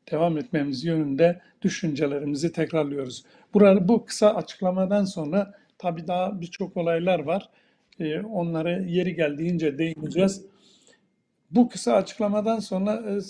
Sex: male